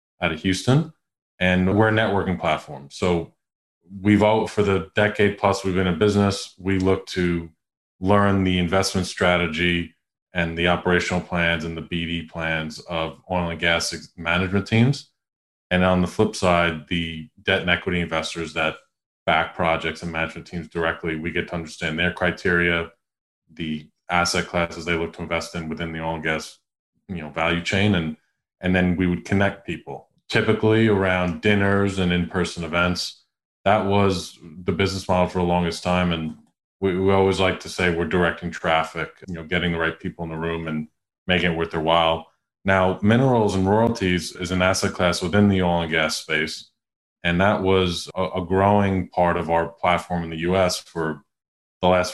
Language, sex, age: English, male, 20-39